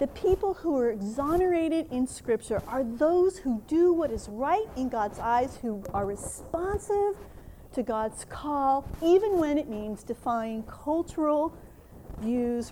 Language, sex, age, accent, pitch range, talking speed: English, female, 40-59, American, 225-315 Hz, 140 wpm